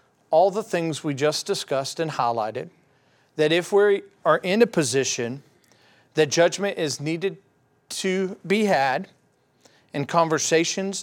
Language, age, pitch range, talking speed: English, 40-59, 140-185 Hz, 130 wpm